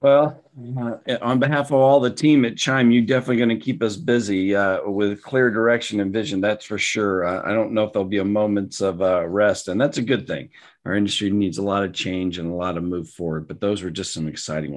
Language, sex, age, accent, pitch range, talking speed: English, male, 40-59, American, 90-120 Hz, 245 wpm